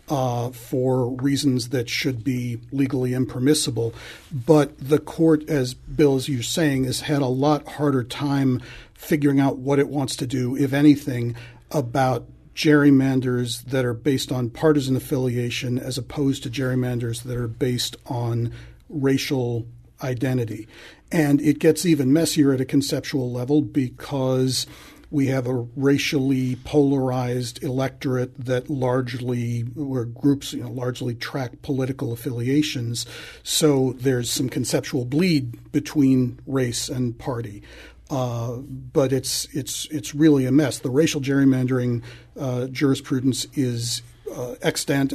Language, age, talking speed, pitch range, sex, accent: English, 50-69, 130 wpm, 125-145 Hz, male, American